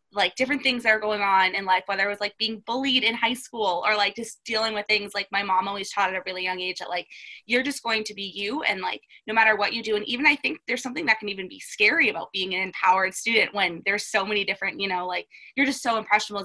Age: 20-39